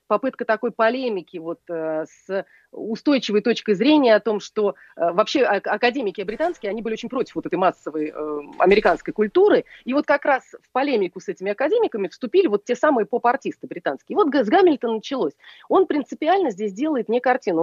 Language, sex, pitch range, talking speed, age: Russian, female, 195-280 Hz, 165 wpm, 30-49